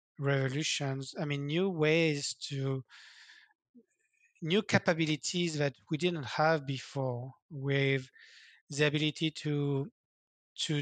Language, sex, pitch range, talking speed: English, male, 135-165 Hz, 100 wpm